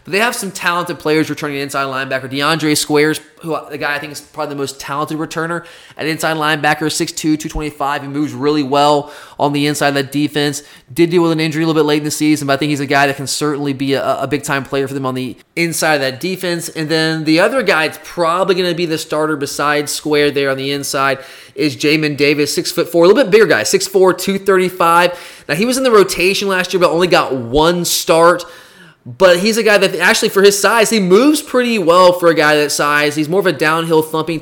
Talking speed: 240 wpm